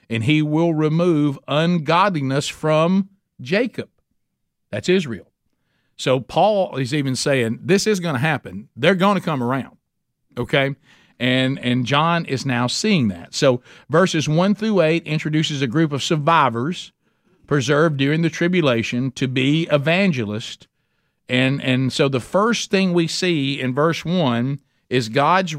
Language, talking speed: English, 145 wpm